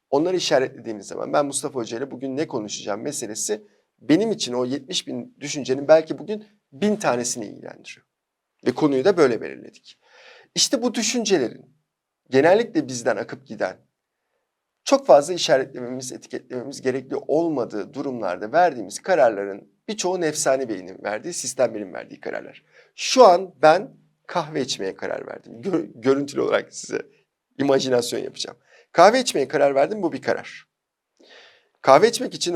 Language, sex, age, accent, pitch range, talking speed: Turkish, male, 50-69, native, 130-190 Hz, 135 wpm